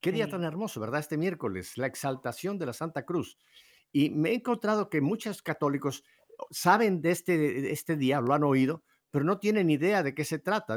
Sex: male